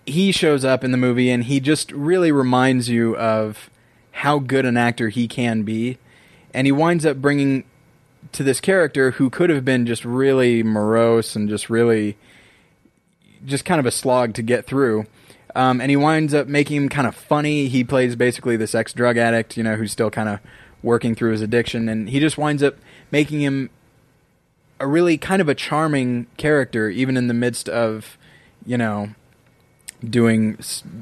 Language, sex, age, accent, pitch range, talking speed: English, male, 20-39, American, 115-135 Hz, 180 wpm